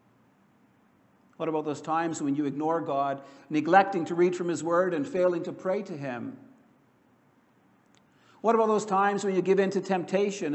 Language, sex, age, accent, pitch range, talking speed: English, male, 60-79, American, 145-195 Hz, 170 wpm